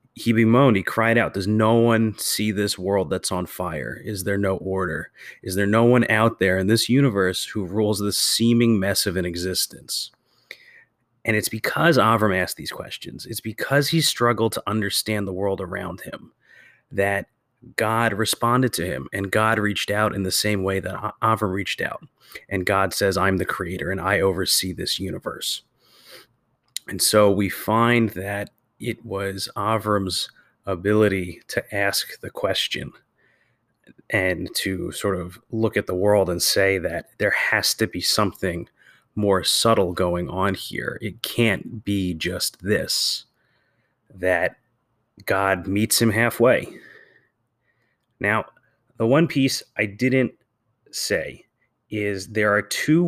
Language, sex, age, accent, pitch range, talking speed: English, male, 30-49, American, 95-115 Hz, 155 wpm